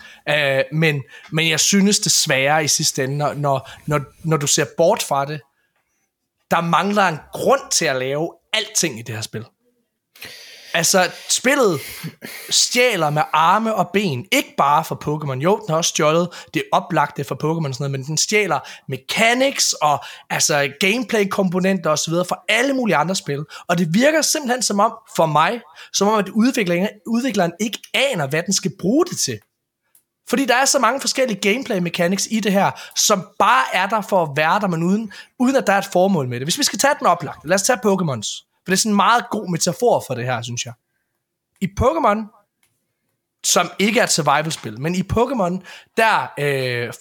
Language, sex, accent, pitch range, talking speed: Danish, male, native, 155-220 Hz, 190 wpm